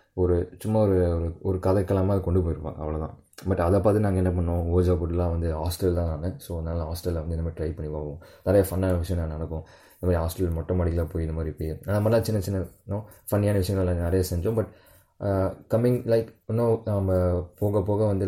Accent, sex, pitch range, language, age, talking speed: native, male, 85-100 Hz, Tamil, 20-39, 195 wpm